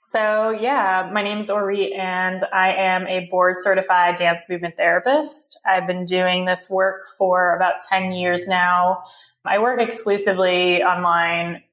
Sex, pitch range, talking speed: female, 180-195 Hz, 150 wpm